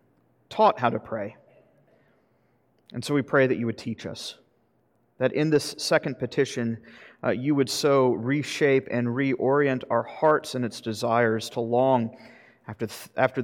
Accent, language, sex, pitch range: American, English, male, 125-150 Hz